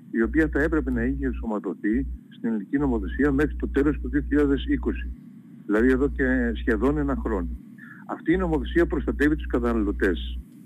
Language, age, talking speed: Greek, 50-69, 150 wpm